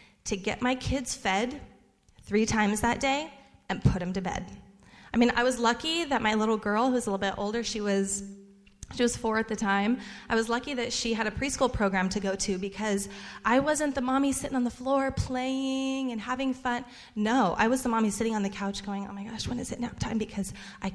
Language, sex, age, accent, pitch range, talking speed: English, female, 20-39, American, 195-240 Hz, 230 wpm